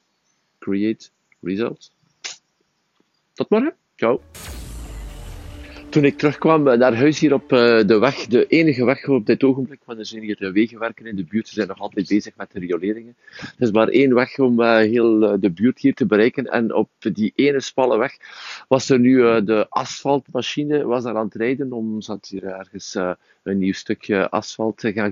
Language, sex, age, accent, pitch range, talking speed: Dutch, male, 50-69, Swiss, 105-125 Hz, 180 wpm